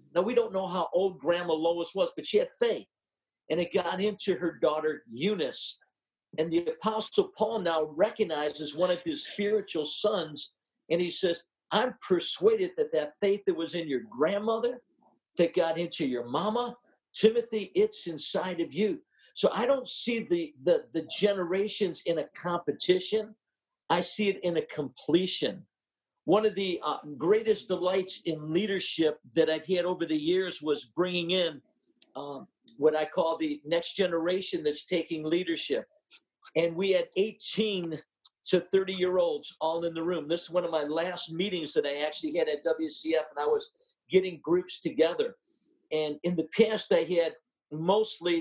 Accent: American